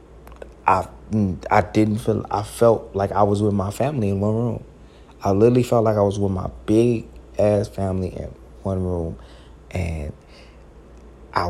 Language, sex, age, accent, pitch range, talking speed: English, male, 30-49, American, 70-95 Hz, 160 wpm